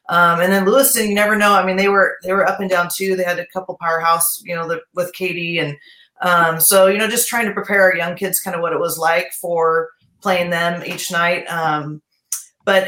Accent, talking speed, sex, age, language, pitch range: American, 245 wpm, female, 30-49, English, 160-185 Hz